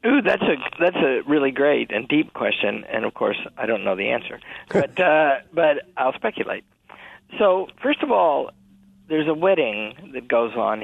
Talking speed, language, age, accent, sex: 185 wpm, English, 50-69, American, male